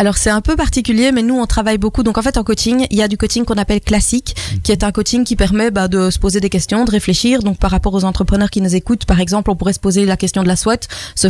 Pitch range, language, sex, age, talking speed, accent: 195-235 Hz, French, female, 20-39, 305 wpm, French